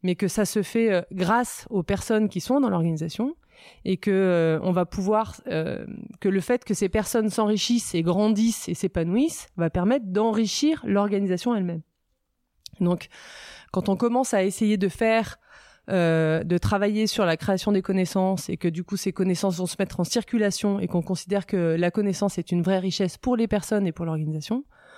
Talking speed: 185 wpm